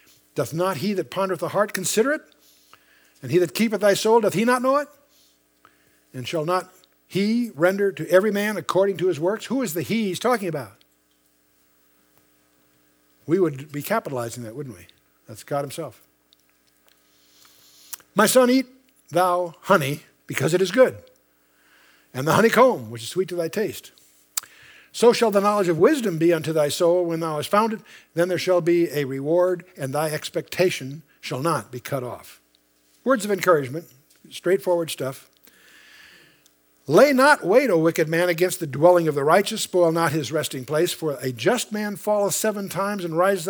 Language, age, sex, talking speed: English, 60-79, male, 175 wpm